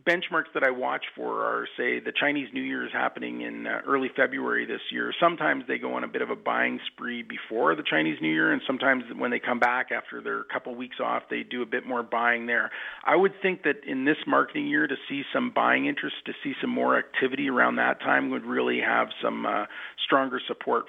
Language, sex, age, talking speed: English, male, 40-59, 230 wpm